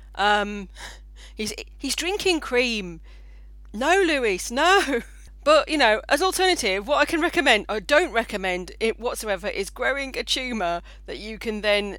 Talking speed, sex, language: 150 wpm, female, English